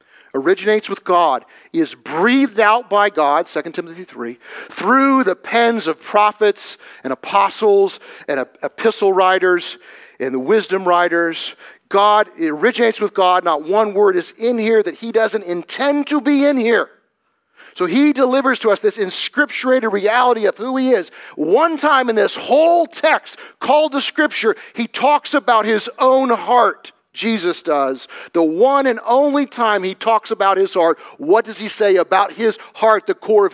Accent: American